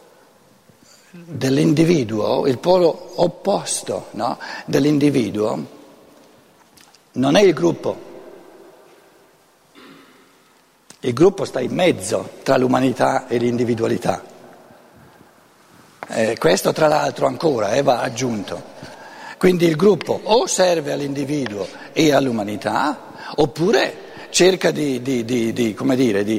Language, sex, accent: Italian, male, native